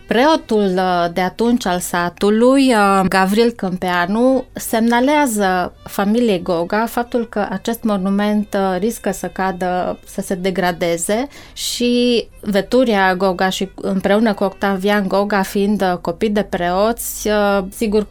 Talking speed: 110 wpm